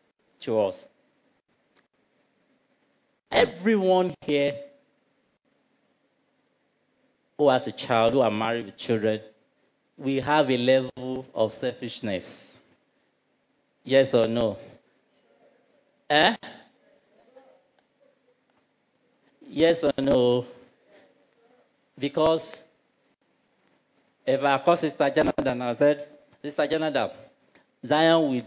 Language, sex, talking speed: English, male, 80 wpm